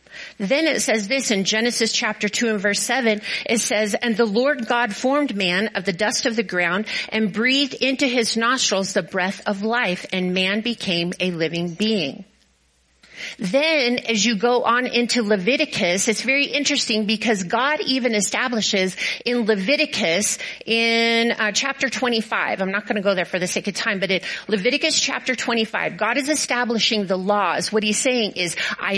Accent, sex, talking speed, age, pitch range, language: American, female, 180 wpm, 40-59, 200-255 Hz, English